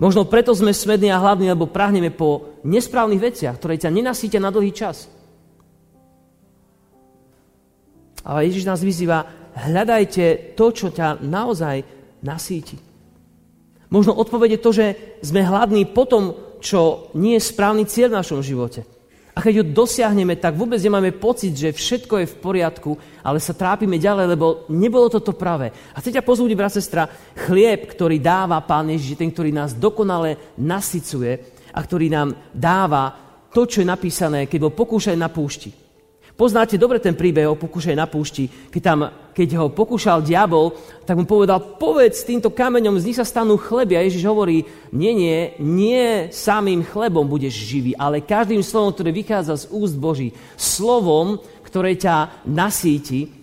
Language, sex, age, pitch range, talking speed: Slovak, male, 40-59, 145-205 Hz, 155 wpm